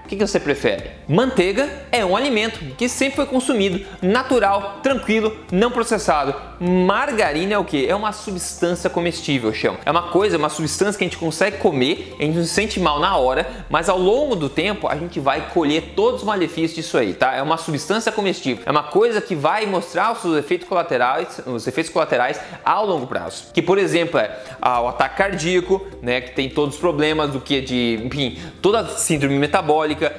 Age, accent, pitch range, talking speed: 20-39, Brazilian, 150-210 Hz, 200 wpm